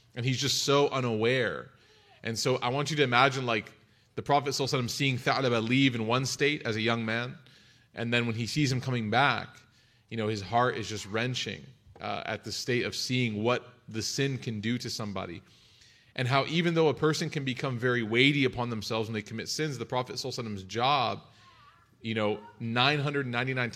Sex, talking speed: male, 205 wpm